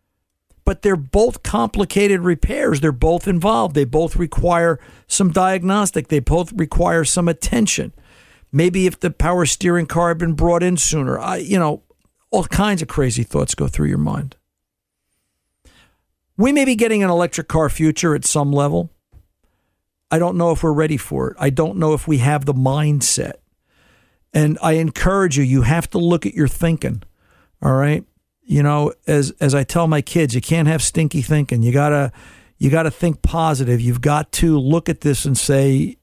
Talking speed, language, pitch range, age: 180 wpm, English, 140-175 Hz, 50-69